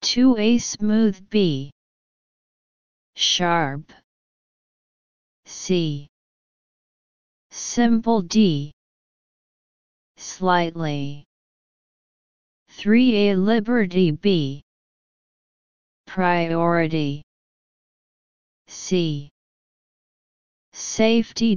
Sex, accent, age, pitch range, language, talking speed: female, American, 30-49, 150-215 Hz, English, 45 wpm